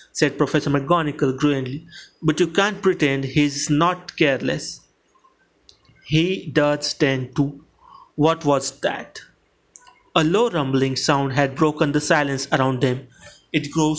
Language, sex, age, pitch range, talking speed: English, male, 30-49, 145-180 Hz, 130 wpm